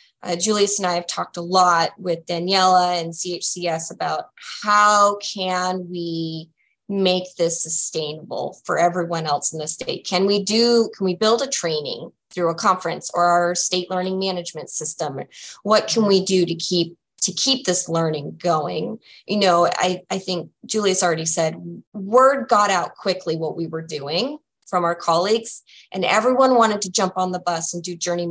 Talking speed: 175 wpm